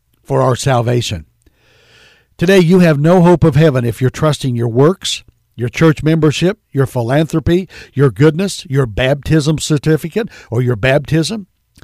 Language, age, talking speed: English, 60-79, 140 wpm